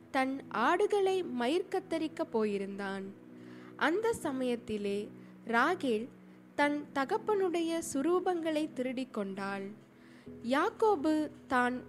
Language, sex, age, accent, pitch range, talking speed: Tamil, female, 20-39, native, 210-340 Hz, 70 wpm